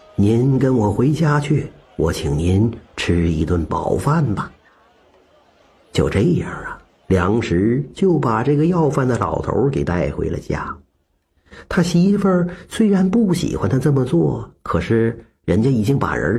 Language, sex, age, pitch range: Chinese, male, 50-69, 95-155 Hz